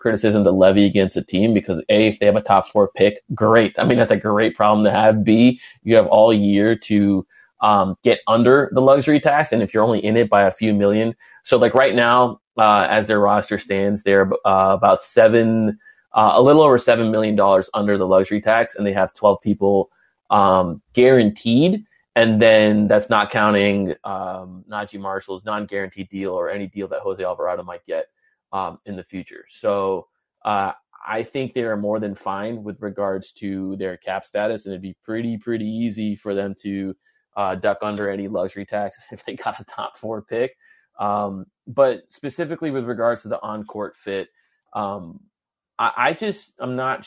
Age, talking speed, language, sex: 20-39, 195 wpm, English, male